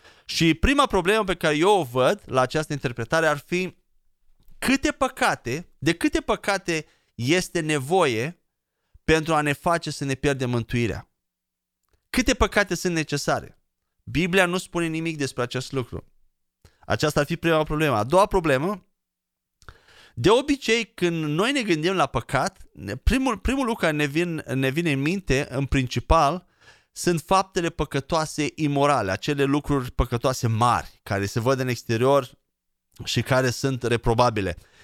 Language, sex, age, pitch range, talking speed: Romanian, male, 30-49, 135-185 Hz, 145 wpm